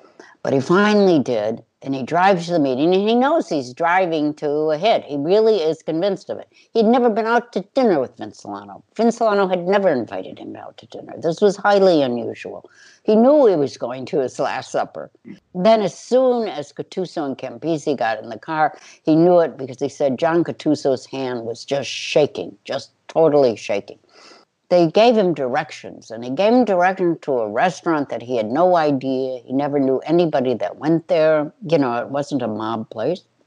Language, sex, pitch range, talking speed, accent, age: English, female, 140-200 Hz, 195 wpm, American, 60-79